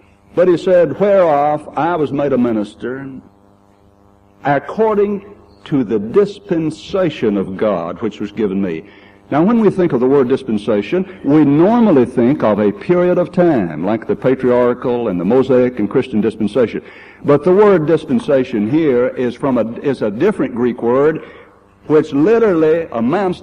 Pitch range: 100-155 Hz